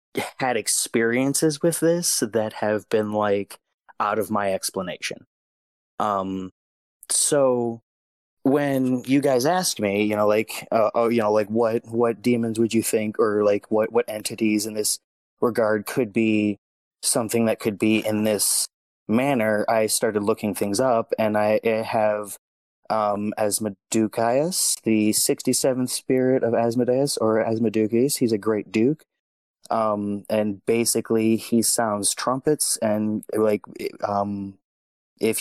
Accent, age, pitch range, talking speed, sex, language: American, 20-39, 105-115 Hz, 135 wpm, male, English